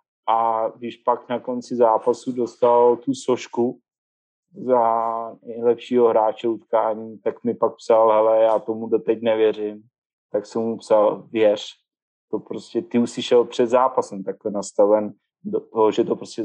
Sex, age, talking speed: male, 30-49, 155 wpm